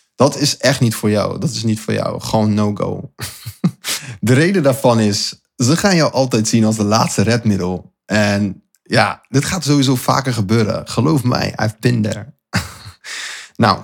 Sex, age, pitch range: male, 20-39, 110-145 Hz